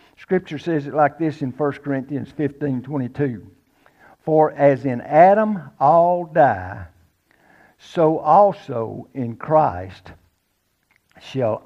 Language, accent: English, American